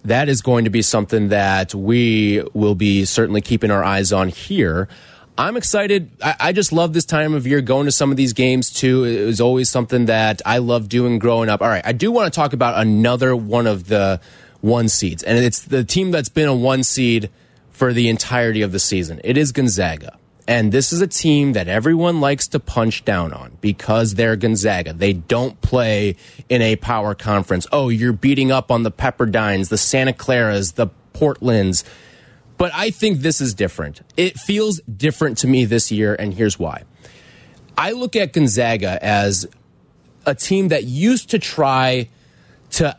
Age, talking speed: 20-39, 190 wpm